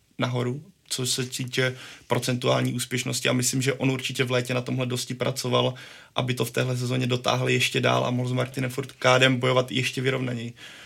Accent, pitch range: native, 125-130 Hz